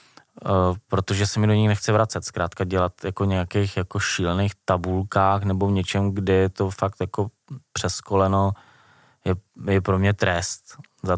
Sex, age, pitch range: male, 20-39, 95-105 Hz